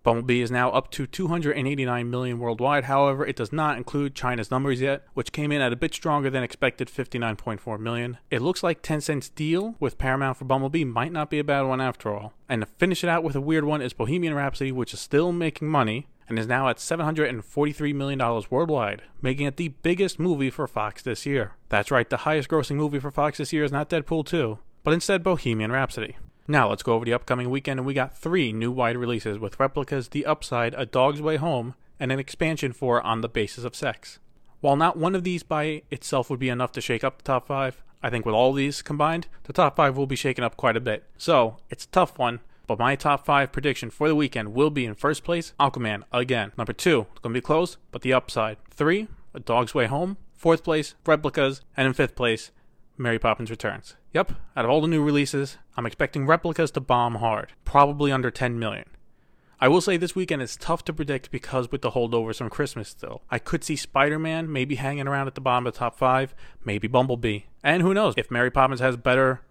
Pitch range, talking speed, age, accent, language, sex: 120-150 Hz, 225 wpm, 30-49, American, English, male